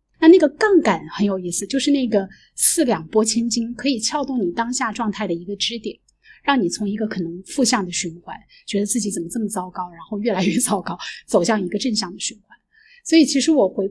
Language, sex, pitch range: Chinese, female, 205-275 Hz